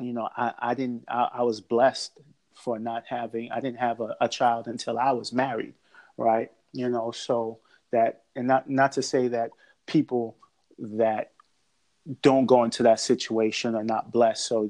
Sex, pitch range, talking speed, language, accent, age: male, 115-130 Hz, 185 wpm, English, American, 30-49